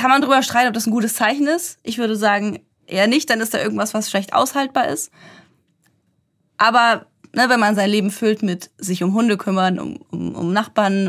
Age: 20-39